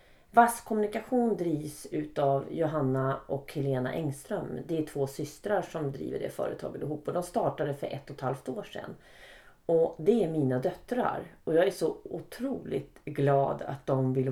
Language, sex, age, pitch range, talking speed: Swedish, female, 40-59, 135-180 Hz, 170 wpm